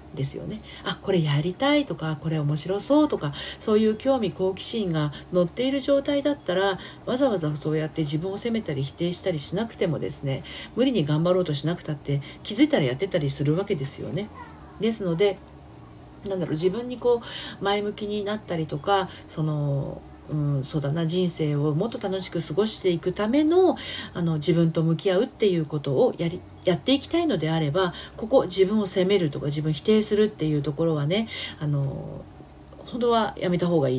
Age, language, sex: 40-59, Japanese, female